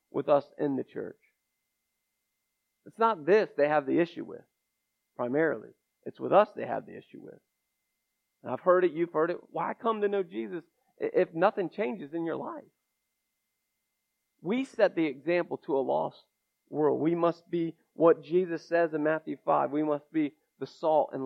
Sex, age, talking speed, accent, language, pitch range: male, 40-59, 175 wpm, American, English, 145-175 Hz